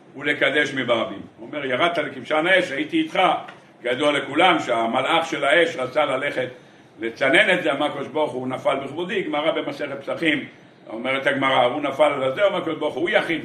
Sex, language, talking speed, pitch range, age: male, Hebrew, 165 wpm, 140-185 Hz, 60-79